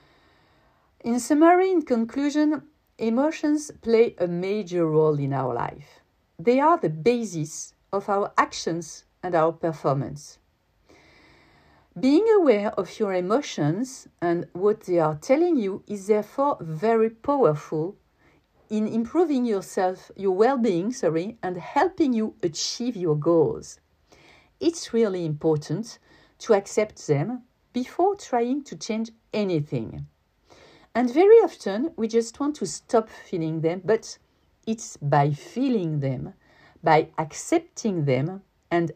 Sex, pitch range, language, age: female, 160-245 Hz, English, 50-69